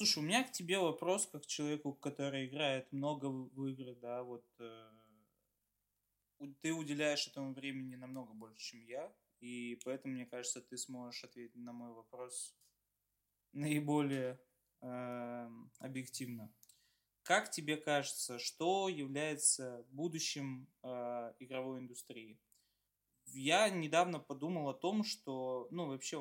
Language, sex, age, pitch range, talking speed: Russian, male, 20-39, 125-150 Hz, 125 wpm